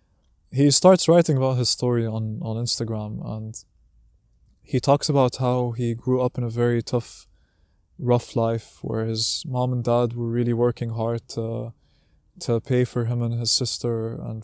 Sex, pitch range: male, 115-130 Hz